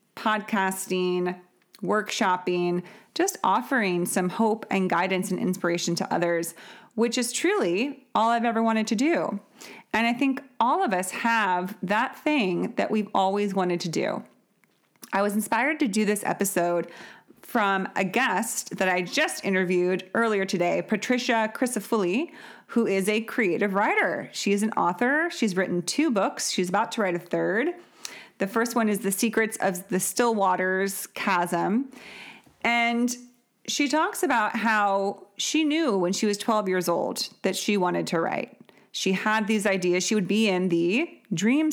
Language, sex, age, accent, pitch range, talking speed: English, female, 30-49, American, 185-230 Hz, 160 wpm